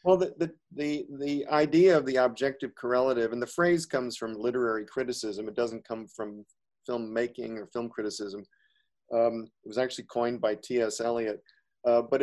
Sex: male